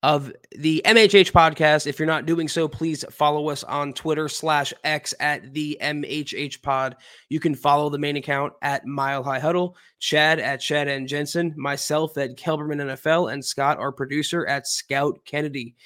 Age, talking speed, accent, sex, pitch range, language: 20-39, 175 wpm, American, male, 140-155 Hz, English